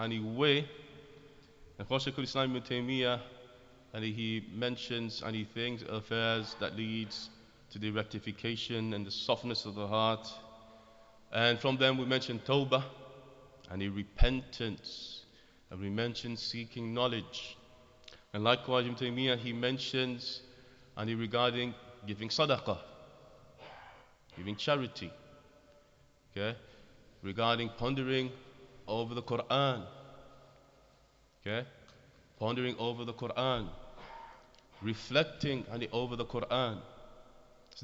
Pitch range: 115-135 Hz